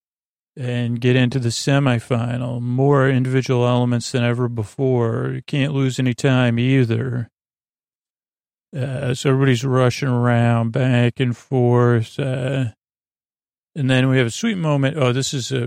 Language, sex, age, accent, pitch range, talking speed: English, male, 40-59, American, 120-140 Hz, 140 wpm